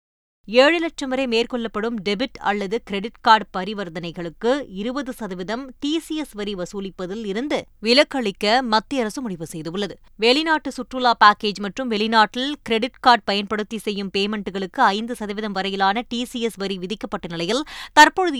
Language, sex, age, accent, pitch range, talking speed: Tamil, female, 20-39, native, 205-260 Hz, 110 wpm